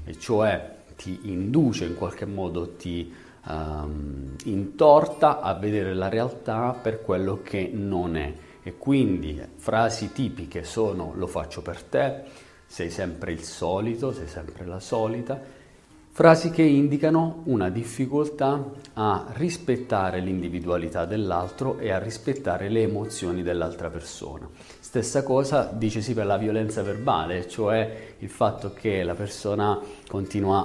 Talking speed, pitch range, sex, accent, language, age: 130 wpm, 90-120 Hz, male, native, Italian, 40-59